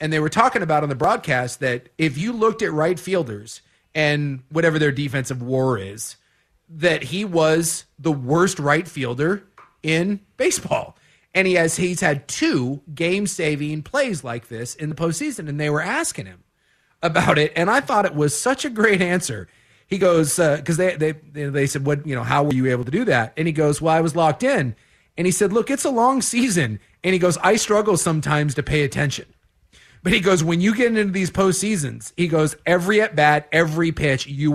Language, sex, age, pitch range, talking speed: English, male, 30-49, 150-205 Hz, 205 wpm